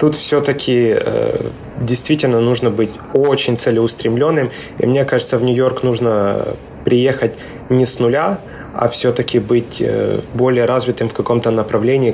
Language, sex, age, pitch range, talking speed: Russian, male, 20-39, 110-130 Hz, 135 wpm